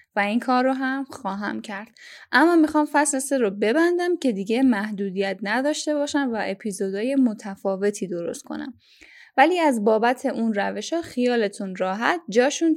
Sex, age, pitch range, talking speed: female, 10-29, 210-285 Hz, 145 wpm